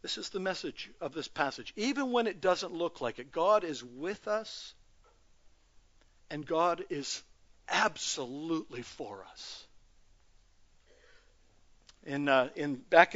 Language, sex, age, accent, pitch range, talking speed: English, male, 60-79, American, 145-200 Hz, 130 wpm